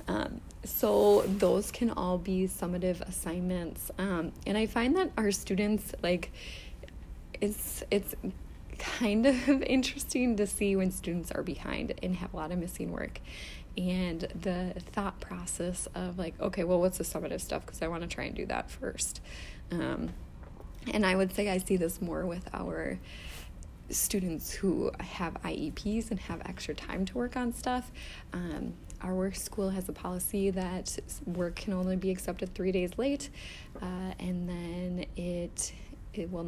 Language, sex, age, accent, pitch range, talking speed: English, female, 20-39, American, 165-200 Hz, 165 wpm